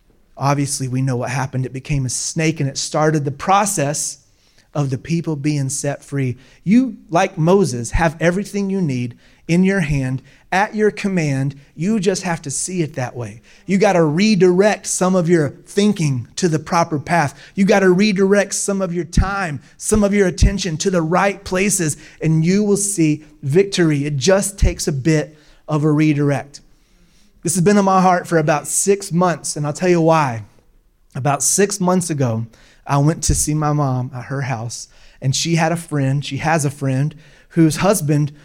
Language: English